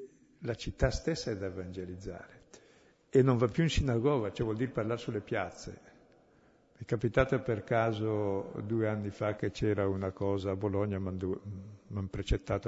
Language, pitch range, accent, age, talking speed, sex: Italian, 105-130 Hz, native, 60-79, 165 wpm, male